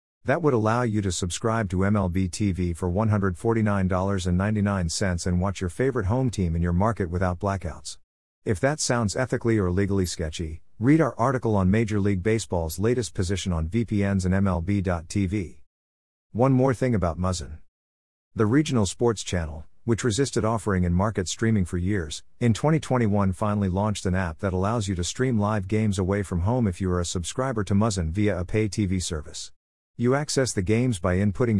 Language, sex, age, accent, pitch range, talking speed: English, male, 50-69, American, 90-115 Hz, 175 wpm